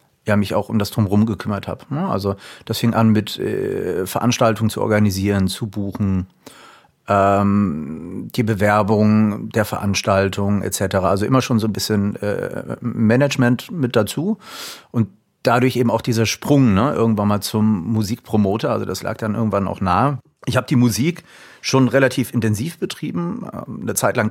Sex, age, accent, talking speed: male, 40-59, German, 145 wpm